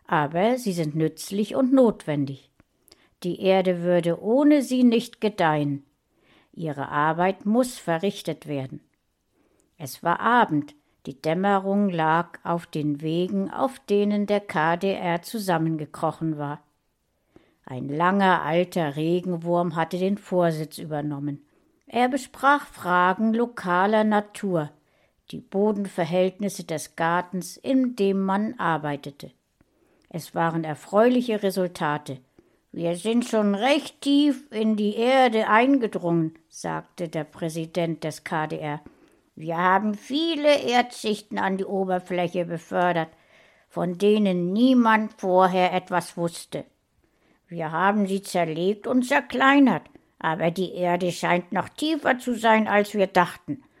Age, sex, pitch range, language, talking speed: 60-79, female, 165-220 Hz, German, 115 wpm